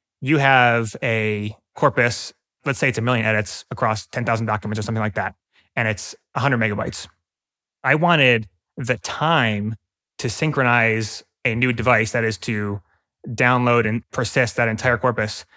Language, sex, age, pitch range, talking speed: English, male, 20-39, 110-130 Hz, 150 wpm